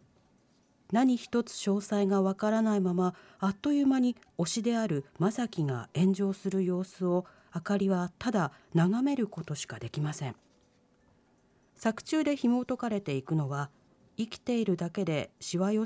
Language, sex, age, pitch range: Japanese, female, 40-59, 170-230 Hz